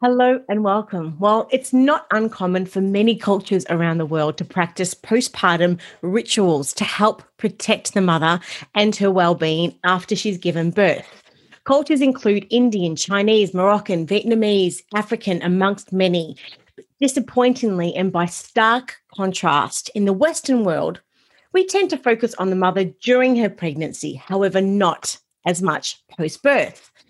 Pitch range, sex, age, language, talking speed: 180-225 Hz, female, 30-49, English, 140 wpm